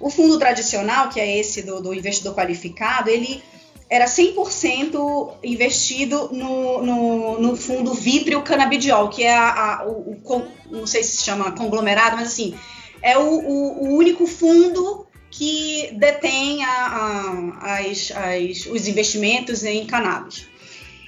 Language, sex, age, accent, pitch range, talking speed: Portuguese, female, 20-39, Brazilian, 205-275 Hz, 140 wpm